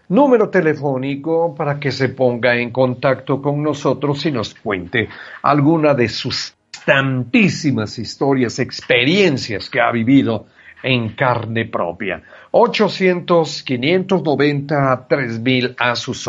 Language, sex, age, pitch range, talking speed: English, male, 50-69, 120-150 Hz, 110 wpm